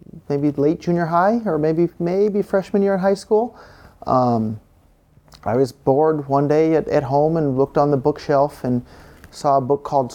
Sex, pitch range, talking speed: male, 115-145 Hz, 185 wpm